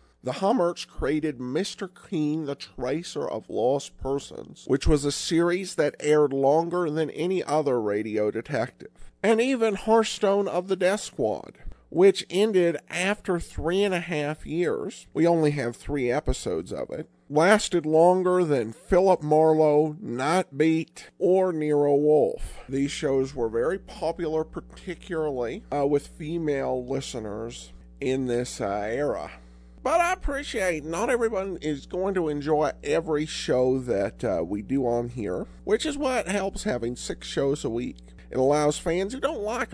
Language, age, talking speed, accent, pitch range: English, 50-69, 155 wpm, American, 140-195 Hz